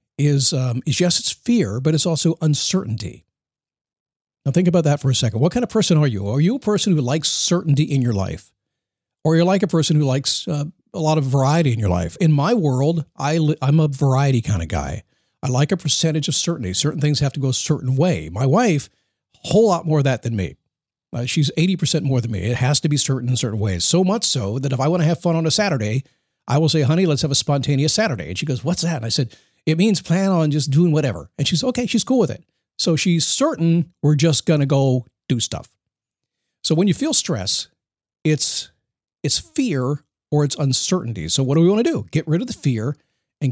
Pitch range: 130-165 Hz